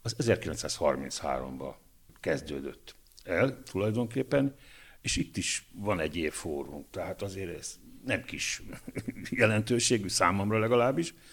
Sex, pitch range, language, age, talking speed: male, 90-125 Hz, Hungarian, 60-79, 100 wpm